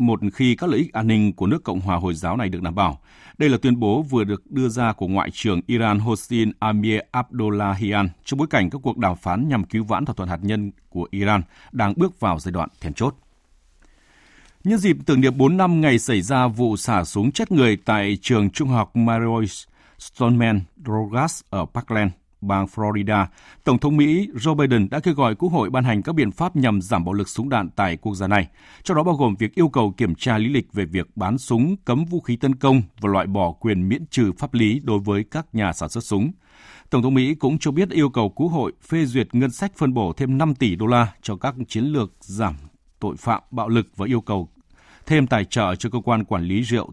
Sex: male